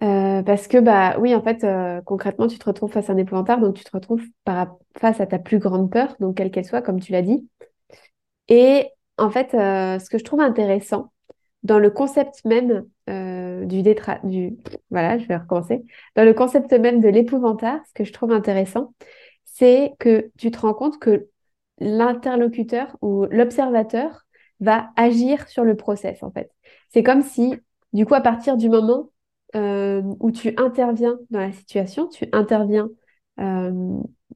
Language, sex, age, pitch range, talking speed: French, female, 20-39, 200-250 Hz, 180 wpm